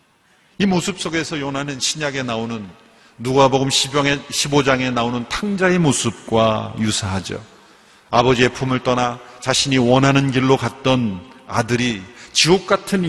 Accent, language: native, Korean